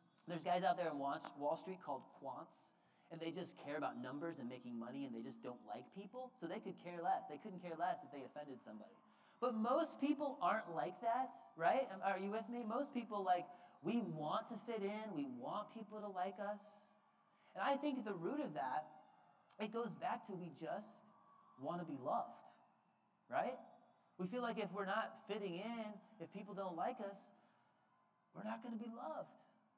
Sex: male